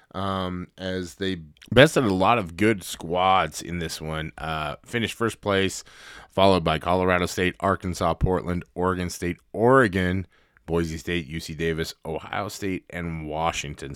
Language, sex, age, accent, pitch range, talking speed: English, male, 20-39, American, 85-110 Hz, 140 wpm